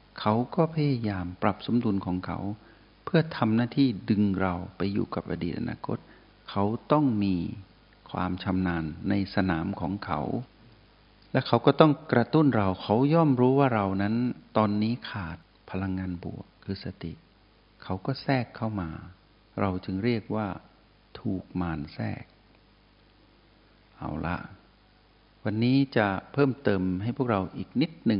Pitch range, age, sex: 95-110 Hz, 60-79, male